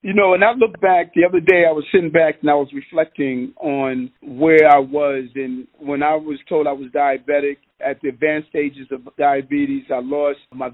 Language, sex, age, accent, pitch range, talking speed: English, male, 40-59, American, 140-180 Hz, 210 wpm